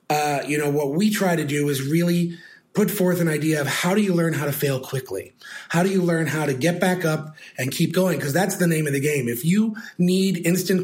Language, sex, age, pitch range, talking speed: English, male, 30-49, 145-175 Hz, 255 wpm